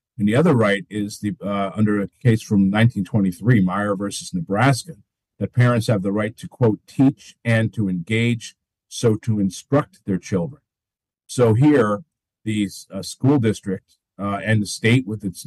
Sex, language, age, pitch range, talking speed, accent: male, English, 50-69, 100-120 Hz, 165 wpm, American